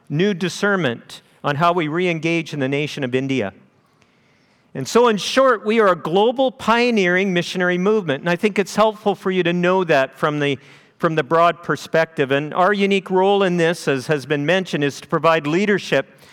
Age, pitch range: 50-69, 160-210 Hz